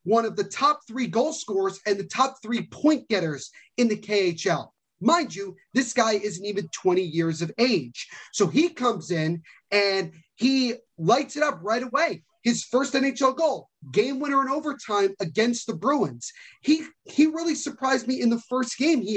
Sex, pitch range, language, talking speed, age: male, 195-250 Hz, English, 180 wpm, 30-49